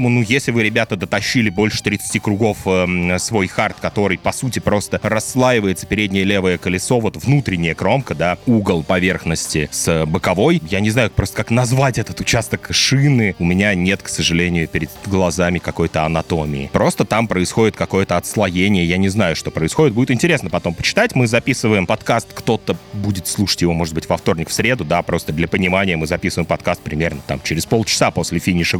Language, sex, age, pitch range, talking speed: Russian, male, 30-49, 90-110 Hz, 175 wpm